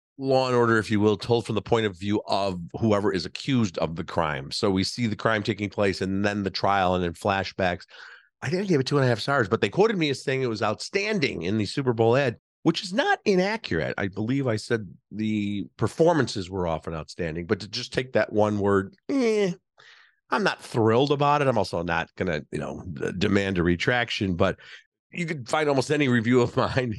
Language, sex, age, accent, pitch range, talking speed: English, male, 50-69, American, 95-125 Hz, 225 wpm